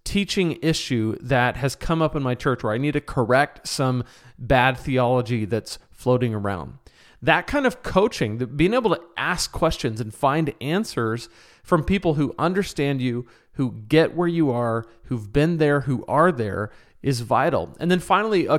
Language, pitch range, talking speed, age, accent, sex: English, 125-165 Hz, 175 wpm, 40-59, American, male